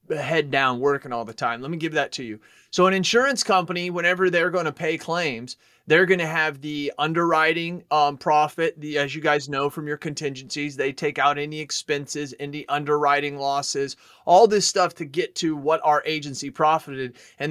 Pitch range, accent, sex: 150-185 Hz, American, male